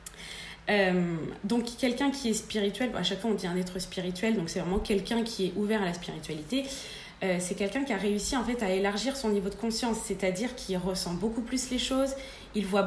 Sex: female